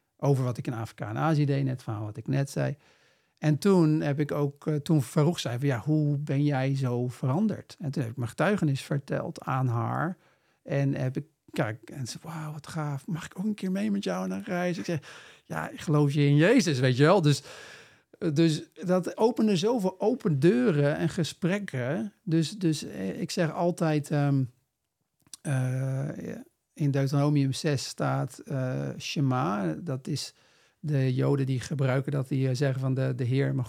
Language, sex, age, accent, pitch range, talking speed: Dutch, male, 50-69, Dutch, 135-165 Hz, 190 wpm